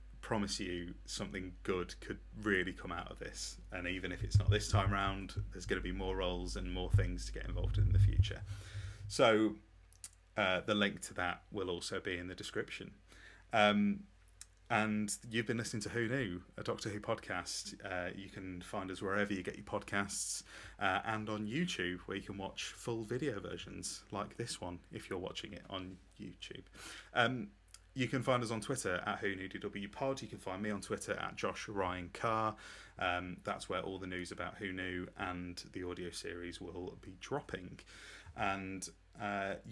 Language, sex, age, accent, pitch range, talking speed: English, male, 30-49, British, 90-105 Hz, 195 wpm